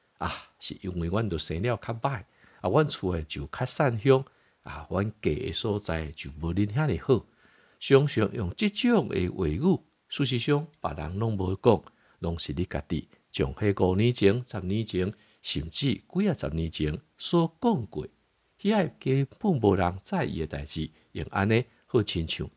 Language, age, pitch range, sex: Chinese, 50-69, 80-115 Hz, male